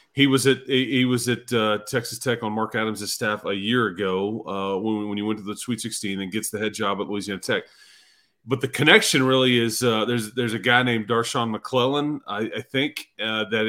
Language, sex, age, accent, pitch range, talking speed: English, male, 30-49, American, 110-130 Hz, 225 wpm